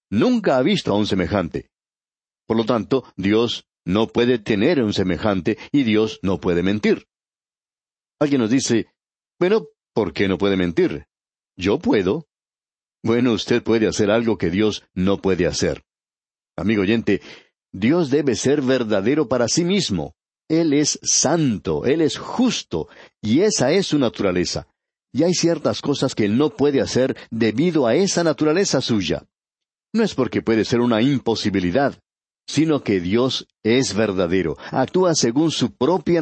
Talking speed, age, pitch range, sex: 150 wpm, 60-79, 105-140 Hz, male